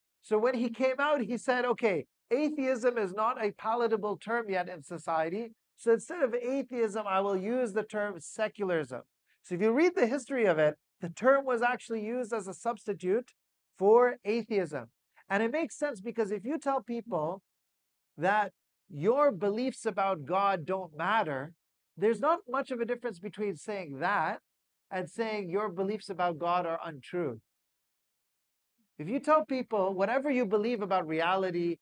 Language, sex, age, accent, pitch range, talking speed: English, male, 40-59, American, 185-245 Hz, 165 wpm